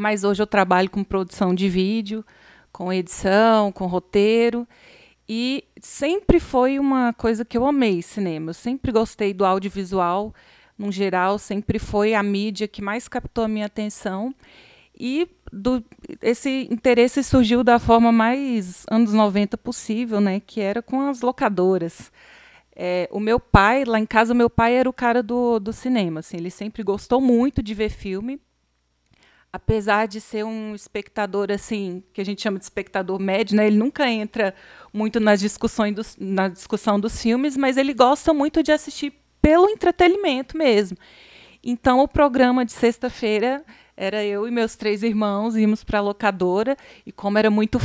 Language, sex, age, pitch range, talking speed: Portuguese, female, 30-49, 200-245 Hz, 165 wpm